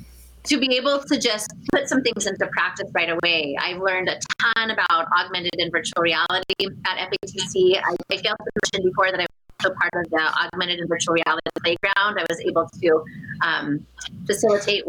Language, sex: English, female